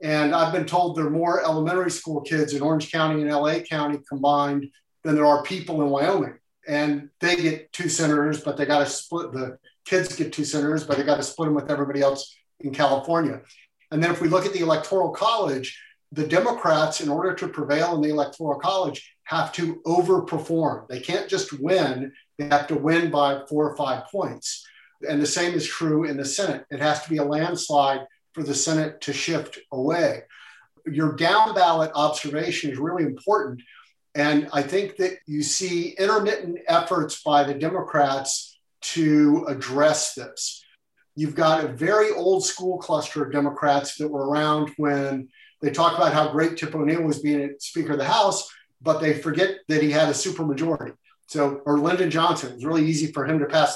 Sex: male